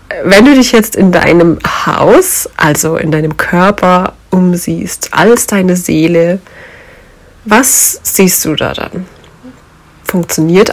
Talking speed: 115 wpm